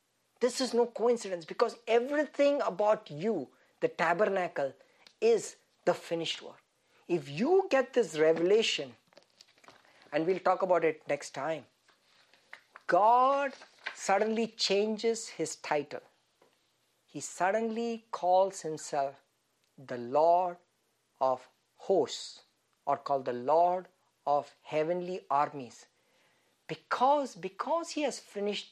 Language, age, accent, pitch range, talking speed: English, 50-69, Indian, 160-240 Hz, 105 wpm